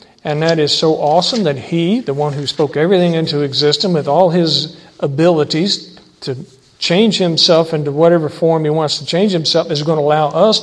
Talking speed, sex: 190 wpm, male